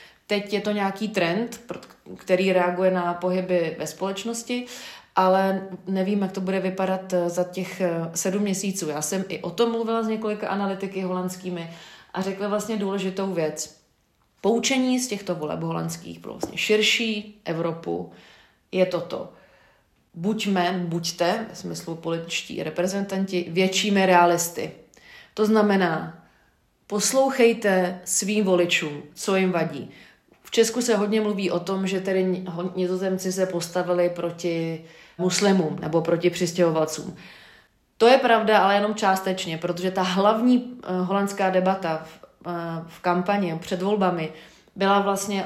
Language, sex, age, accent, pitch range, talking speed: Czech, female, 30-49, native, 170-200 Hz, 130 wpm